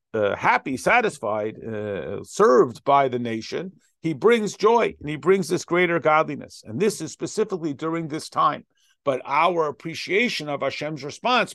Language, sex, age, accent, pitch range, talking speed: English, male, 50-69, American, 130-180 Hz, 155 wpm